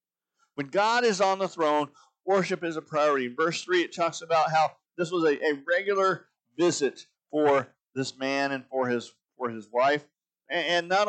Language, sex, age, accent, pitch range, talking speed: English, male, 50-69, American, 145-185 Hz, 190 wpm